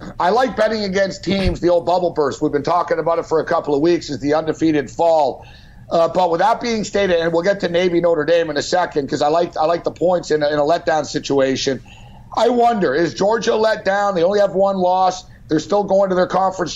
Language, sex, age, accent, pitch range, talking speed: English, male, 60-79, American, 160-195 Hz, 245 wpm